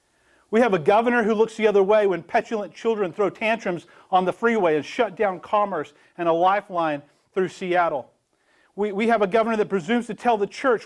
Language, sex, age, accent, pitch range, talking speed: English, male, 40-59, American, 160-225 Hz, 205 wpm